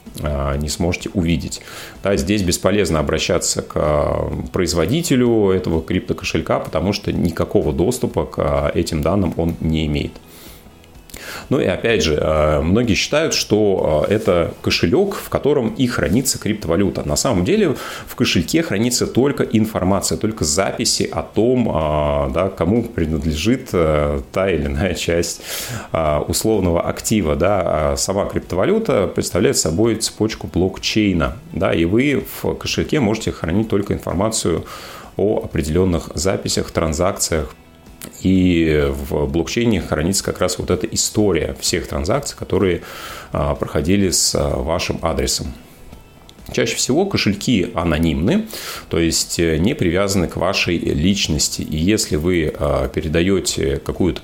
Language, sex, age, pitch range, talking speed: Russian, male, 30-49, 80-100 Hz, 115 wpm